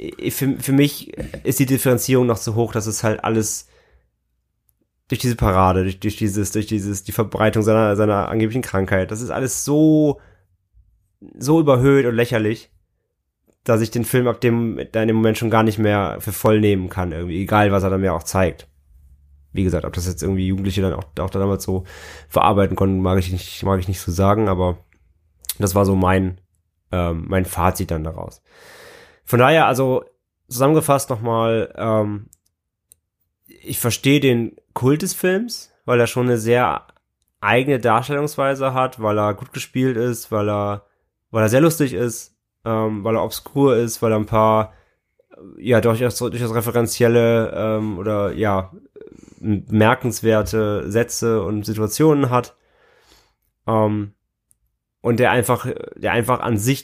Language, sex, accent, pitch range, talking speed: German, male, German, 95-125 Hz, 165 wpm